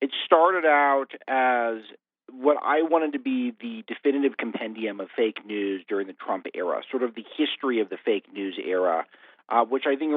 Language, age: English, 40-59